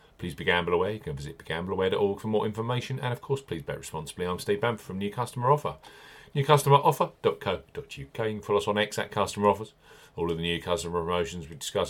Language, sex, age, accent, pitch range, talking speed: English, male, 40-59, British, 100-140 Hz, 205 wpm